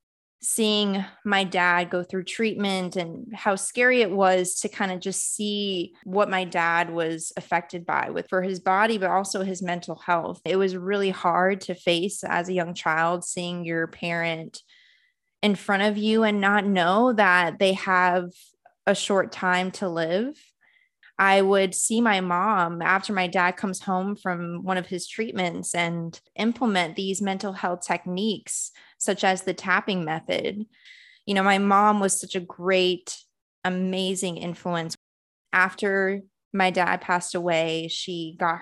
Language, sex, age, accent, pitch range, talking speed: English, female, 20-39, American, 175-200 Hz, 160 wpm